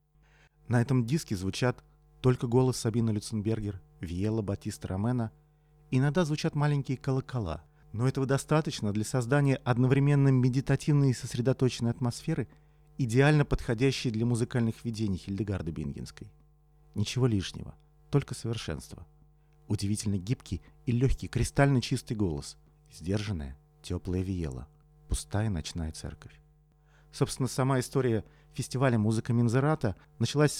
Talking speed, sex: 110 wpm, male